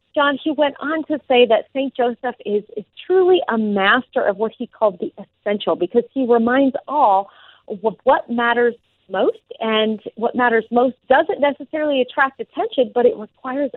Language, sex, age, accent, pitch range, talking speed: English, female, 40-59, American, 215-280 Hz, 170 wpm